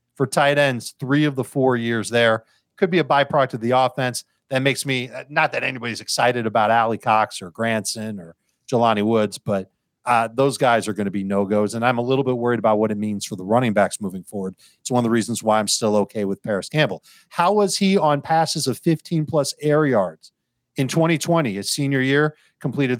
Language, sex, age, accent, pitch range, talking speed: English, male, 40-59, American, 110-145 Hz, 215 wpm